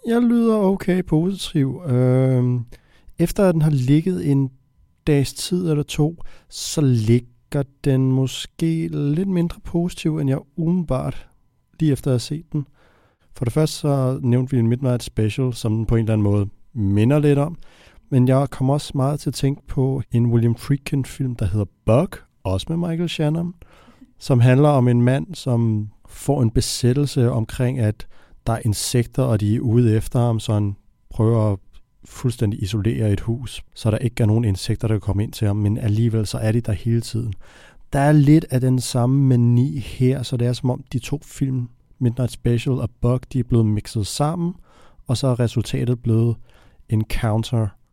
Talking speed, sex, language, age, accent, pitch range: 185 wpm, male, Danish, 60-79, native, 115-145 Hz